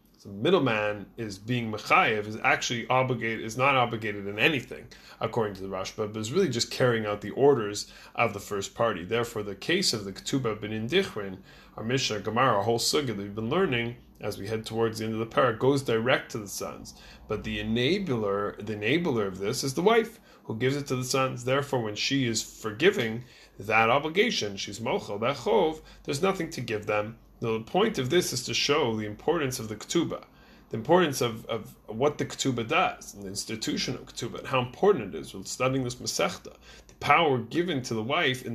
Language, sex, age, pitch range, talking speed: English, male, 30-49, 110-130 Hz, 205 wpm